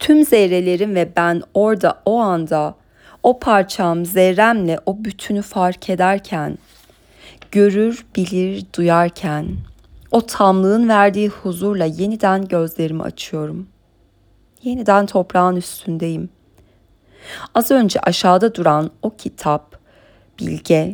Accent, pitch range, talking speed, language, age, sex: native, 160-210 Hz, 95 wpm, Turkish, 30-49, female